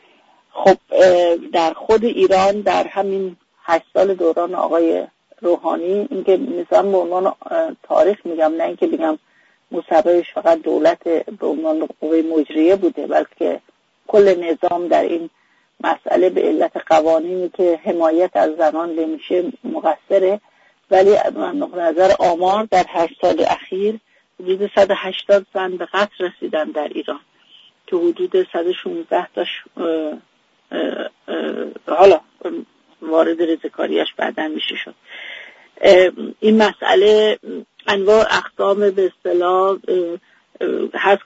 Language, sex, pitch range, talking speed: English, female, 170-220 Hz, 110 wpm